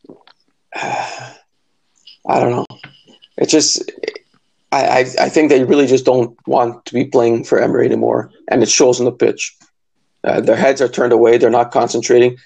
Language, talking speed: English, 165 wpm